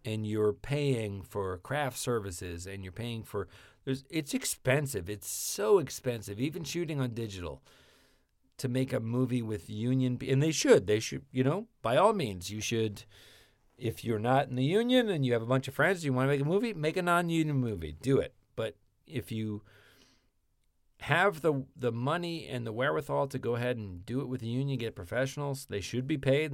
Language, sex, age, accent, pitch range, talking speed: English, male, 40-59, American, 100-135 Hz, 200 wpm